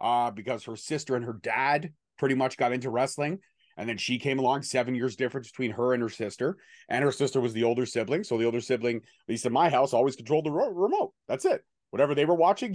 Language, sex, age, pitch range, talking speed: English, male, 30-49, 110-140 Hz, 240 wpm